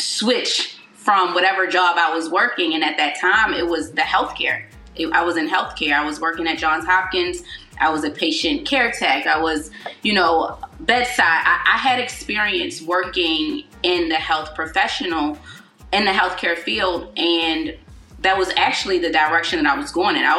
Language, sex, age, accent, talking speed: English, female, 20-39, American, 180 wpm